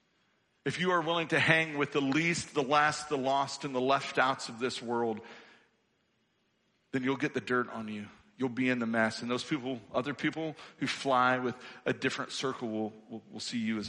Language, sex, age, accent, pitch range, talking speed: English, male, 50-69, American, 115-150 Hz, 210 wpm